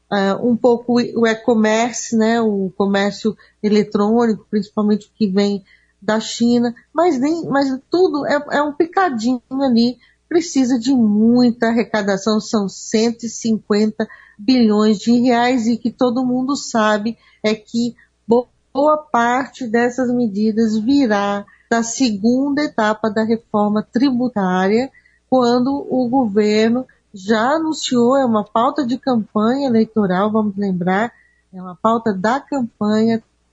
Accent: Brazilian